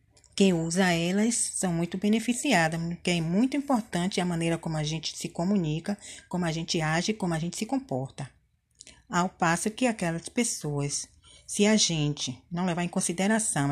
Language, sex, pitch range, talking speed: Portuguese, female, 155-195 Hz, 165 wpm